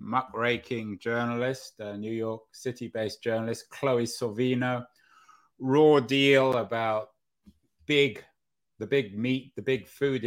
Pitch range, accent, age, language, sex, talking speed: 105-120 Hz, British, 30-49, English, male, 110 wpm